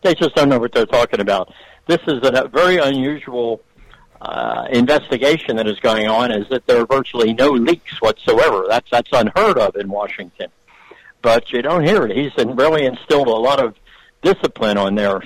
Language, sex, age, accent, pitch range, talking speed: English, male, 60-79, American, 110-150 Hz, 195 wpm